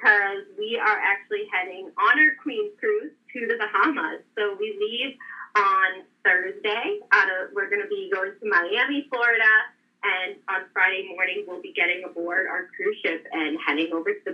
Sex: female